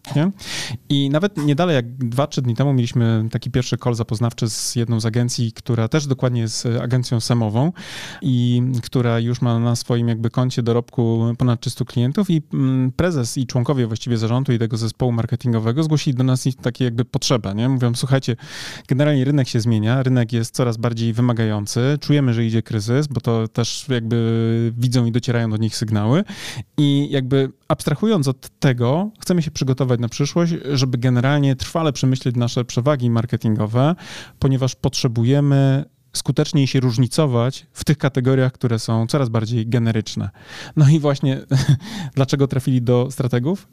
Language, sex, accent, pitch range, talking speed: Polish, male, native, 120-145 Hz, 160 wpm